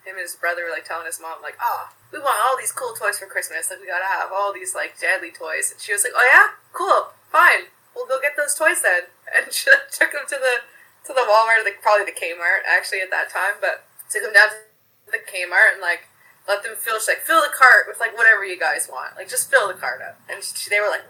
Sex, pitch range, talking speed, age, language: female, 190-260 Hz, 265 wpm, 20-39, English